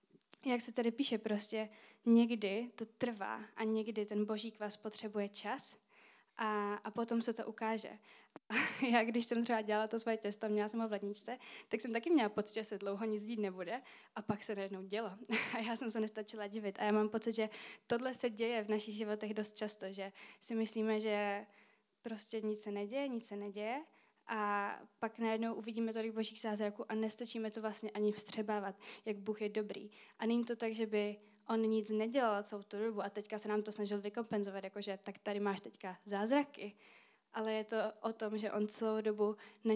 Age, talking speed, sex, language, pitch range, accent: 20-39, 200 wpm, female, Czech, 210-225 Hz, native